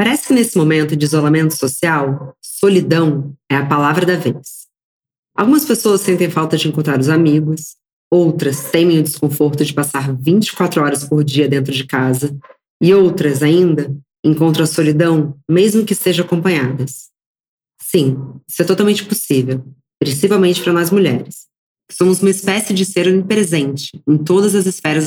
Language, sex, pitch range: Portuguese, female, 140-180 Hz